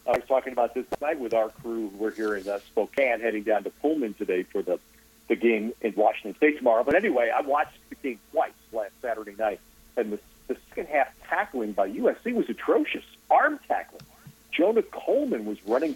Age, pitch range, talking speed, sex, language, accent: 50-69, 110-140 Hz, 200 wpm, male, English, American